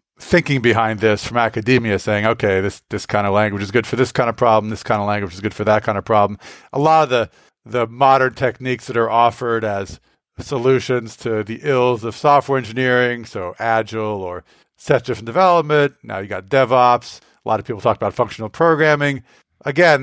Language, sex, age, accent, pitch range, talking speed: English, male, 40-59, American, 105-130 Hz, 200 wpm